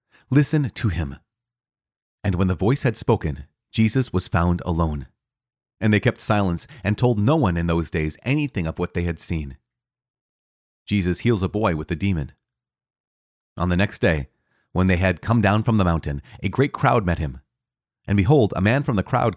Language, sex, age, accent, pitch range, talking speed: English, male, 30-49, American, 90-125 Hz, 190 wpm